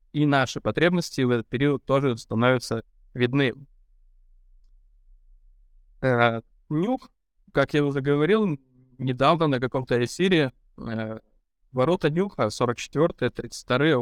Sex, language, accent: male, Russian, native